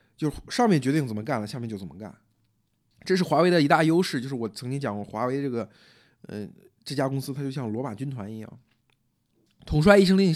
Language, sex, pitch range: Chinese, male, 110-165 Hz